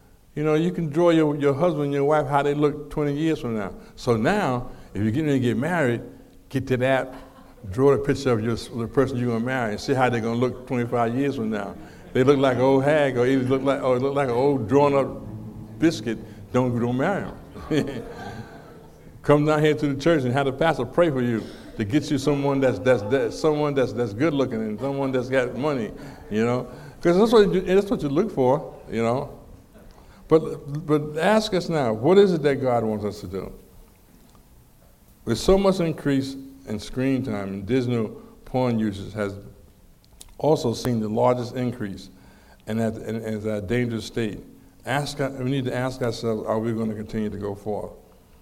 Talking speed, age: 205 wpm, 60-79